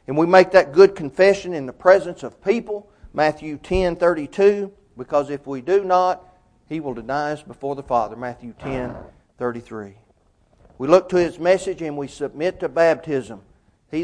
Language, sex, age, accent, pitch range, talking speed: English, male, 40-59, American, 135-190 Hz, 165 wpm